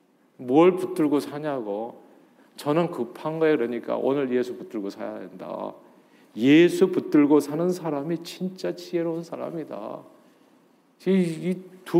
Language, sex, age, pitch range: Korean, male, 40-59, 120-165 Hz